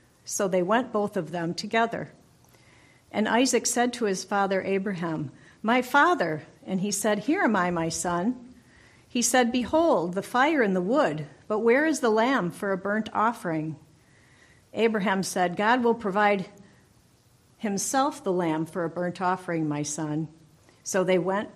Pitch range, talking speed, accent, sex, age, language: 175-230 Hz, 160 wpm, American, female, 50-69, English